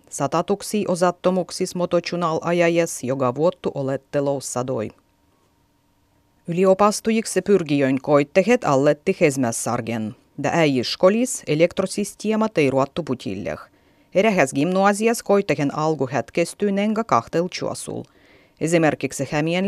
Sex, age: female, 30-49